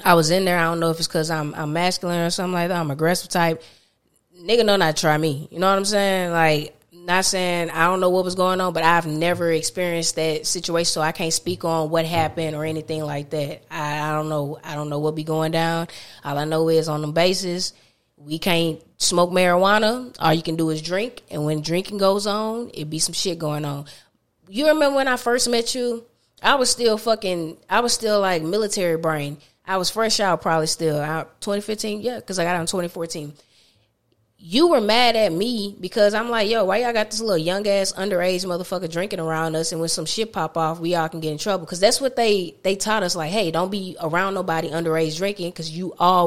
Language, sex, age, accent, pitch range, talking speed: English, female, 20-39, American, 160-195 Hz, 235 wpm